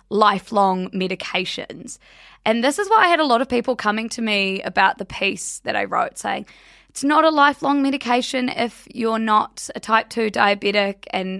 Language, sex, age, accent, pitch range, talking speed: English, female, 20-39, Australian, 200-255 Hz, 185 wpm